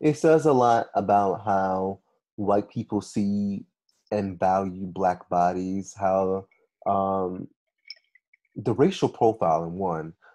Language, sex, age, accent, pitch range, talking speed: English, male, 20-39, American, 95-125 Hz, 110 wpm